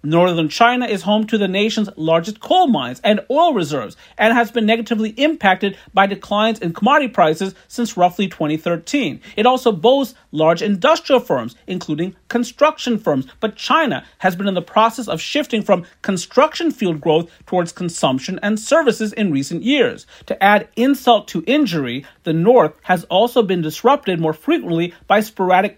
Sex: male